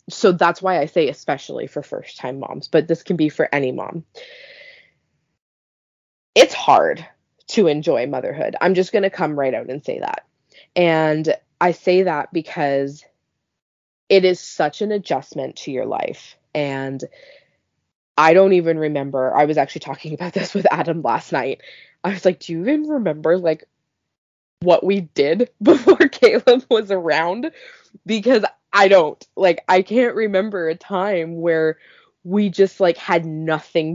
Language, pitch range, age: English, 160-200 Hz, 20-39